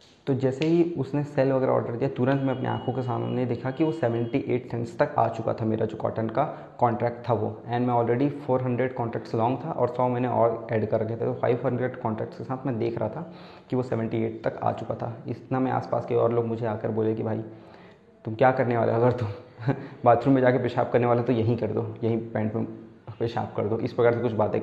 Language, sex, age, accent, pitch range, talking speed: Hindi, male, 20-39, native, 115-135 Hz, 240 wpm